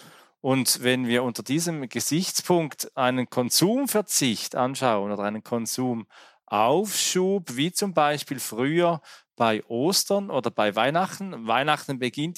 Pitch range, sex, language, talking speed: 125-170 Hz, male, German, 110 wpm